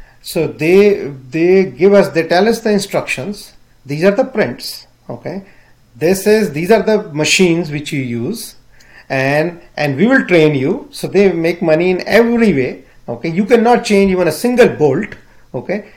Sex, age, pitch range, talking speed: male, 40-59, 150-200 Hz, 175 wpm